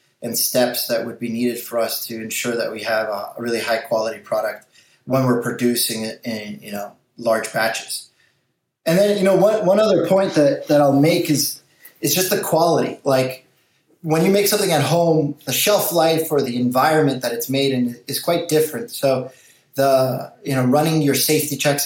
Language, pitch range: English, 120-145 Hz